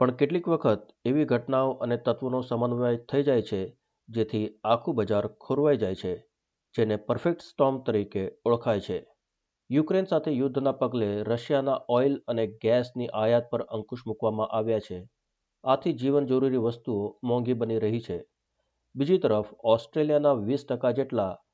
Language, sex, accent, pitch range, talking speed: Gujarati, male, native, 115-140 Hz, 140 wpm